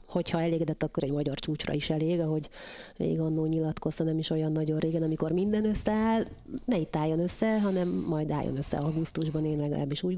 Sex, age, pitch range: female, 30-49, 155-175 Hz